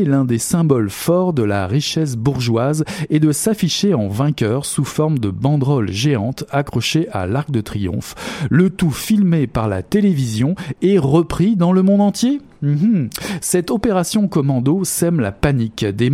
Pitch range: 120-175 Hz